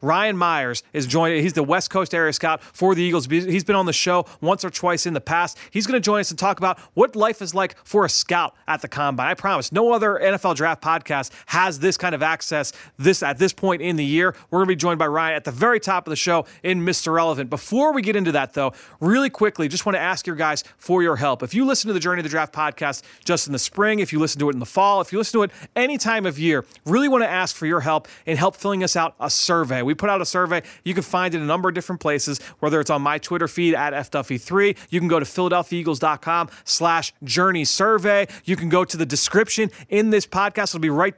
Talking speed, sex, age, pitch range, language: 265 wpm, male, 30-49, 155-190 Hz, English